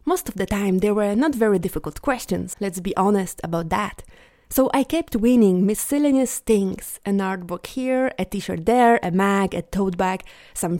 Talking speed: 190 wpm